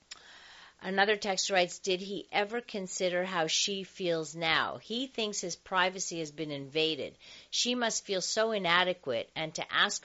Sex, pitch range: female, 160-220 Hz